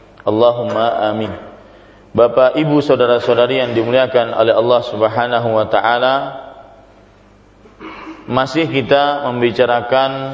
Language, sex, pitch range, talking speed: Malay, male, 115-135 Hz, 85 wpm